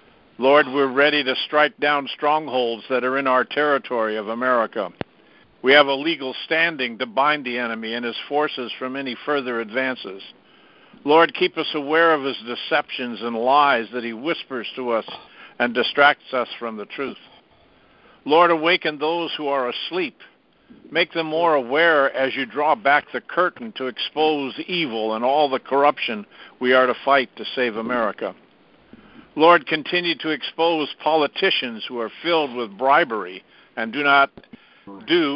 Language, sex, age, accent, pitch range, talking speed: English, male, 60-79, American, 125-155 Hz, 160 wpm